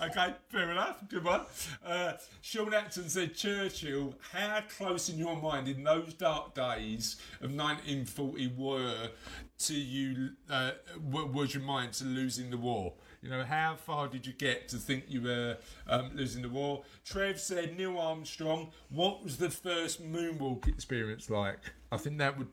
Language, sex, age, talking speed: English, male, 40-59, 170 wpm